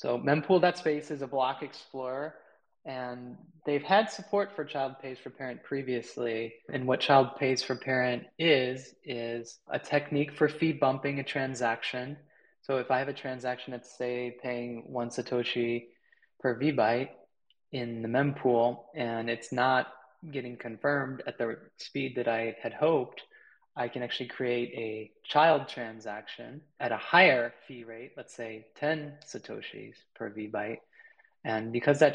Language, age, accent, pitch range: English, 20-39, American, 120-140 Hz